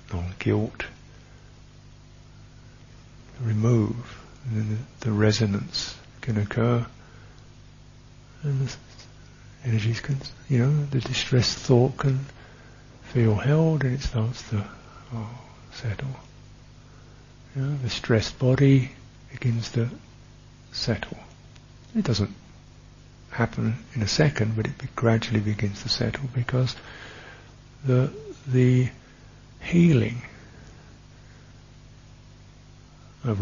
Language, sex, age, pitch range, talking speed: English, male, 60-79, 115-130 Hz, 85 wpm